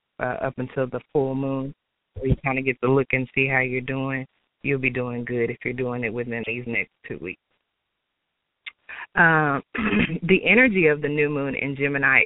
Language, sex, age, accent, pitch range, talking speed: English, female, 30-49, American, 125-145 Hz, 195 wpm